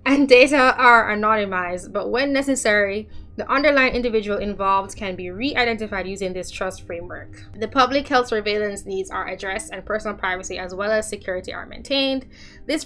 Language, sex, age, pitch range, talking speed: English, female, 10-29, 195-235 Hz, 165 wpm